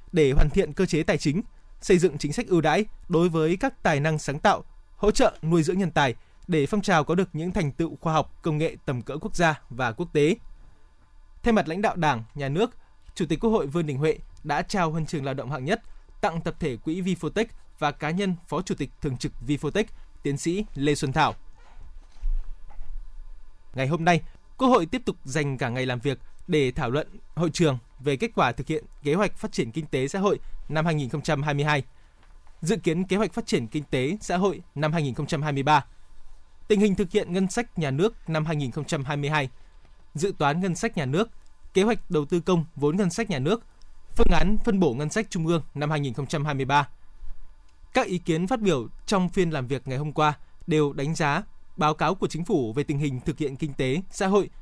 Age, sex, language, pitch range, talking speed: 20-39, male, Vietnamese, 140-185 Hz, 215 wpm